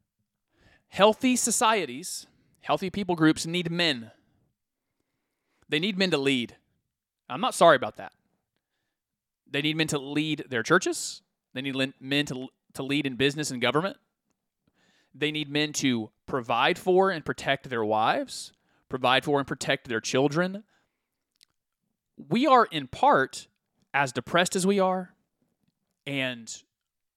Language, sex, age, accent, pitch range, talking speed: English, male, 30-49, American, 135-190 Hz, 135 wpm